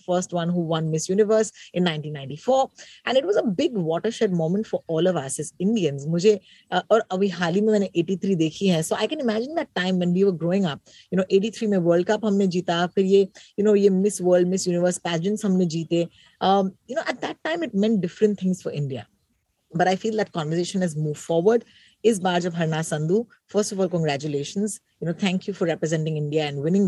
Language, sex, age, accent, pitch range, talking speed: Hindi, female, 30-49, native, 170-215 Hz, 220 wpm